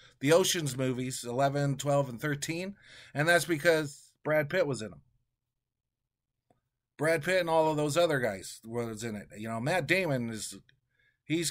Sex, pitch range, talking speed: male, 120-150 Hz, 165 wpm